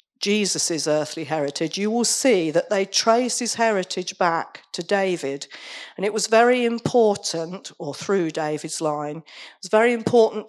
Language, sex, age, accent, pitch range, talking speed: English, female, 50-69, British, 165-215 Hz, 155 wpm